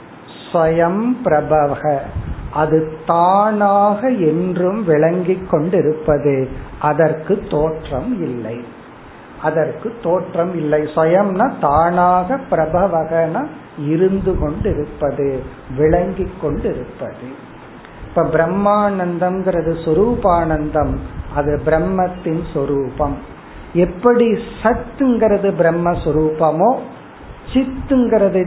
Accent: native